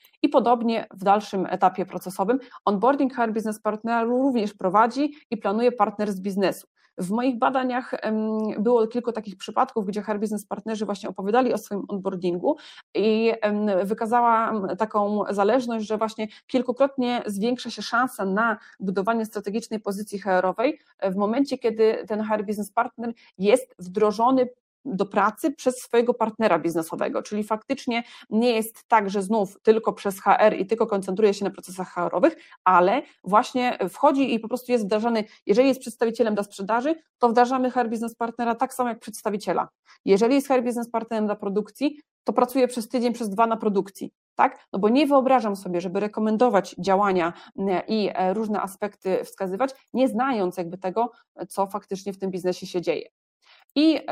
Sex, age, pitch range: female, 30-49, 200-245 Hz